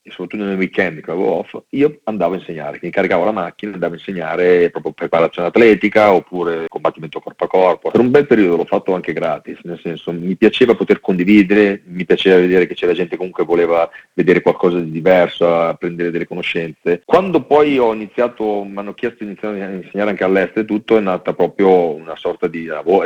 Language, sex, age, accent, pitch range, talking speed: Italian, male, 40-59, native, 85-105 Hz, 205 wpm